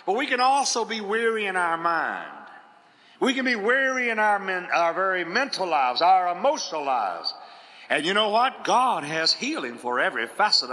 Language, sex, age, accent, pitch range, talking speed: English, male, 50-69, American, 180-250 Hz, 185 wpm